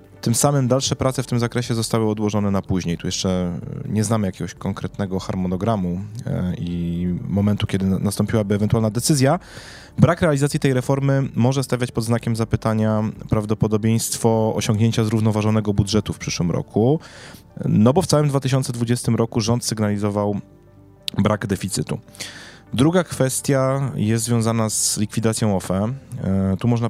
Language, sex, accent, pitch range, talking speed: Polish, male, native, 100-125 Hz, 130 wpm